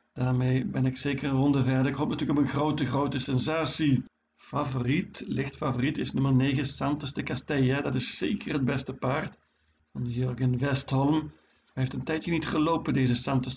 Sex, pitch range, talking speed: male, 130-145 Hz, 180 wpm